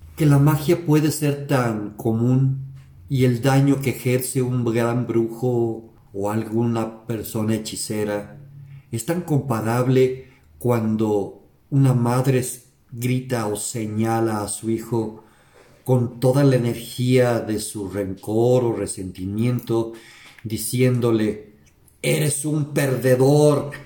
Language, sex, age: Spanish, male, 50-69